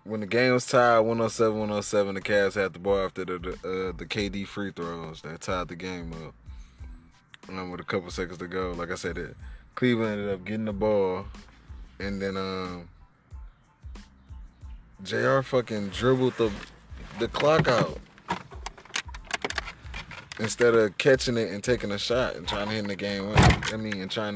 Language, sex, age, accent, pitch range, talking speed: English, male, 20-39, American, 90-110 Hz, 185 wpm